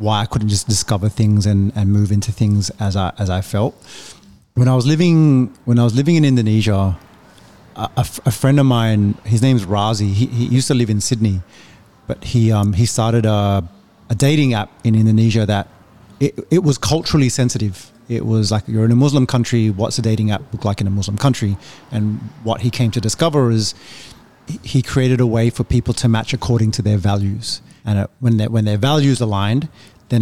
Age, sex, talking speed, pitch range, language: 30-49, male, 205 wpm, 105-125 Hz, English